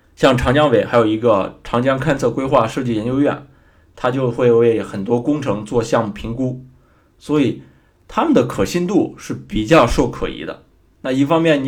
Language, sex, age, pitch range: Chinese, male, 20-39, 110-145 Hz